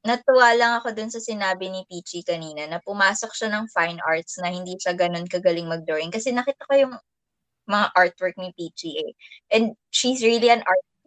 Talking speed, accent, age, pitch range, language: 190 wpm, native, 20-39, 195-260 Hz, Filipino